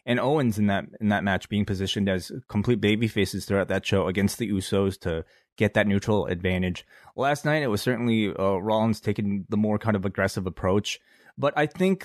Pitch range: 95-115 Hz